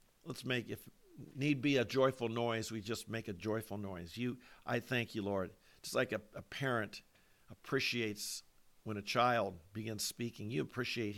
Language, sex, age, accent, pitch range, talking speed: English, male, 50-69, American, 110-135 Hz, 170 wpm